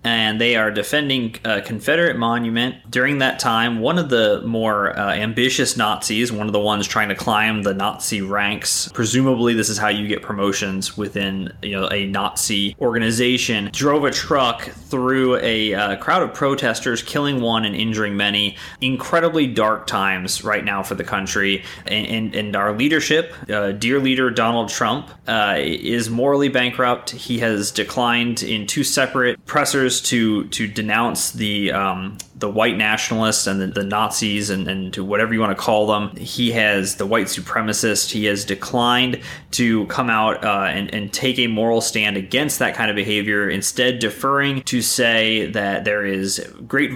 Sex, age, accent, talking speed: male, 20-39, American, 175 wpm